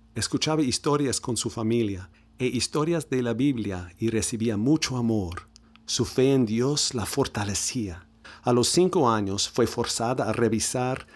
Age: 50-69